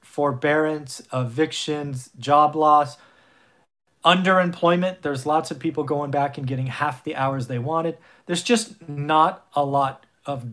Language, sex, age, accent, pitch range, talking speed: English, male, 40-59, American, 130-165 Hz, 135 wpm